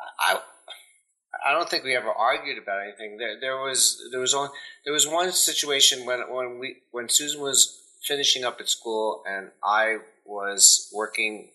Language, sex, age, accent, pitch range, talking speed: English, male, 30-49, American, 95-130 Hz, 170 wpm